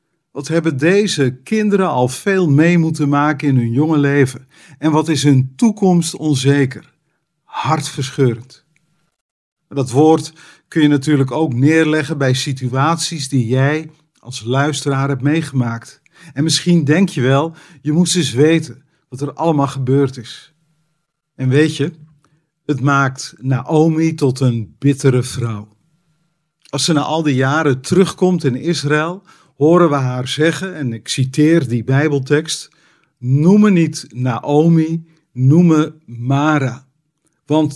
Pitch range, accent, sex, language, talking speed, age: 135-165 Hz, Dutch, male, Dutch, 135 wpm, 50-69